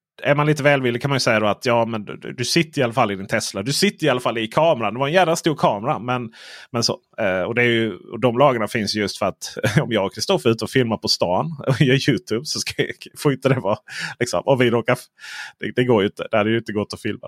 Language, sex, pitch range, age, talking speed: Swedish, male, 105-145 Hz, 30-49, 285 wpm